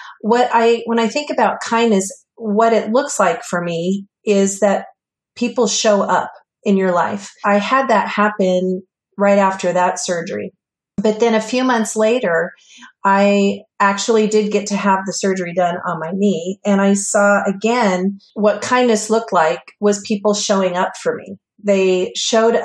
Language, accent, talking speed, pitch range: English, American, 165 wpm, 180-210 Hz